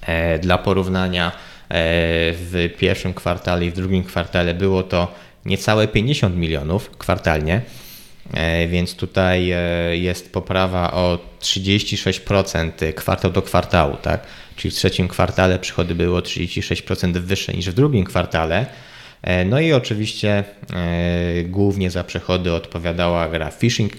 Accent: native